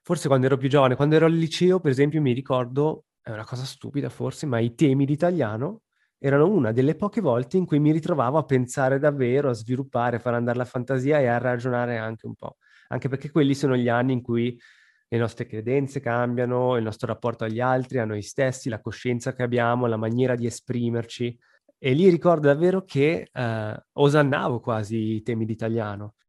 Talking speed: 195 wpm